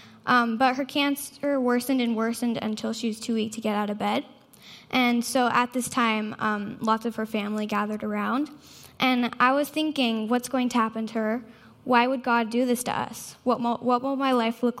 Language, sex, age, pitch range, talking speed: English, female, 10-29, 220-255 Hz, 210 wpm